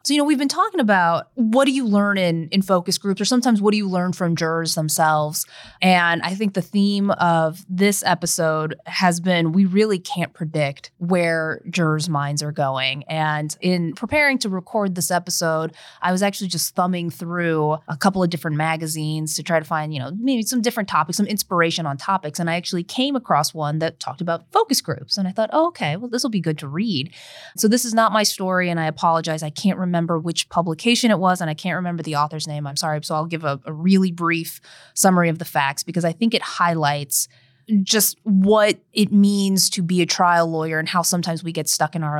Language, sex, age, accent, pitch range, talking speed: English, female, 20-39, American, 160-195 Hz, 220 wpm